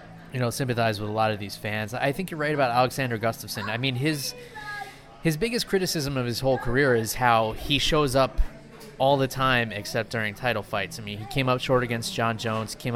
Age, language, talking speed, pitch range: 20-39, English, 220 wpm, 110-135 Hz